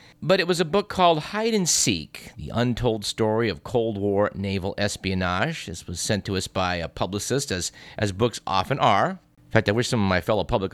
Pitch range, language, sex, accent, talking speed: 95-135 Hz, English, male, American, 220 wpm